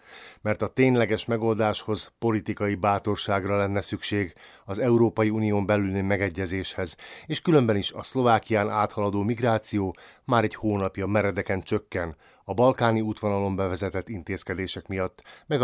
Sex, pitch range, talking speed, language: male, 100-120 Hz, 125 wpm, Hungarian